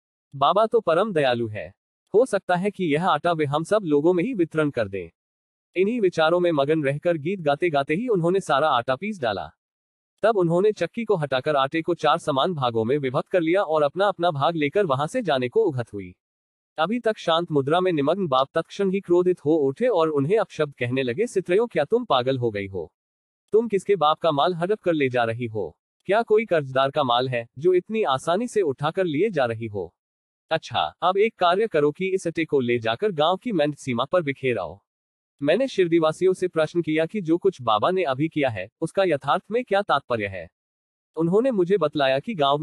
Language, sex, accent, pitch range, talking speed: Hindi, male, native, 130-185 Hz, 185 wpm